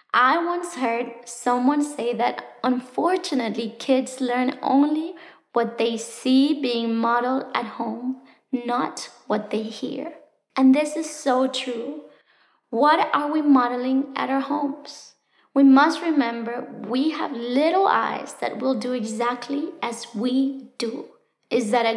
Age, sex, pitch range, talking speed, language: 20-39, female, 245-285 Hz, 135 wpm, English